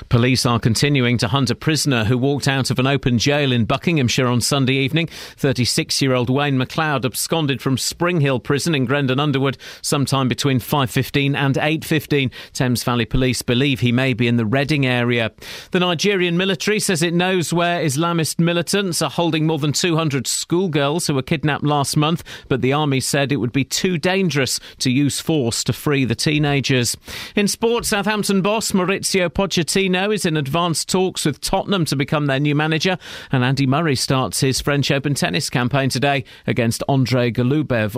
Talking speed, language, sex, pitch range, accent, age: 175 wpm, English, male, 130-175 Hz, British, 40-59